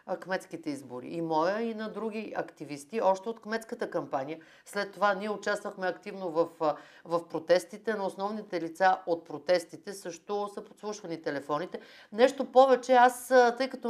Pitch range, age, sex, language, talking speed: 175-225 Hz, 50-69, female, Bulgarian, 145 wpm